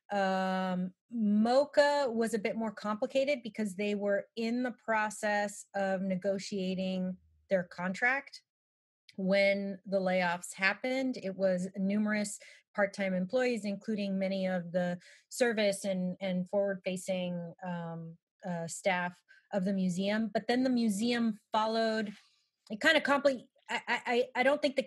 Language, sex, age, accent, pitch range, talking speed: English, female, 30-49, American, 180-215 Hz, 135 wpm